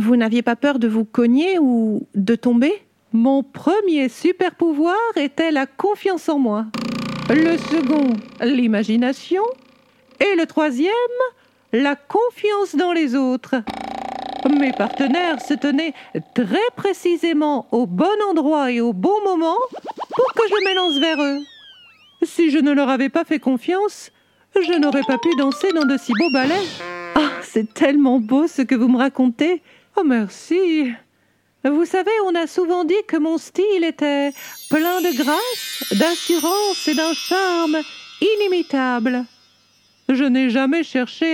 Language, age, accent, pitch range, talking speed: French, 50-69, French, 255-350 Hz, 145 wpm